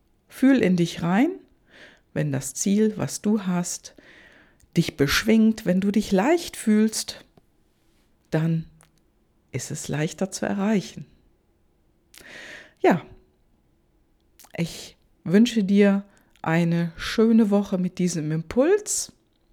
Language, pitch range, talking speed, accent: German, 155-210 Hz, 100 wpm, German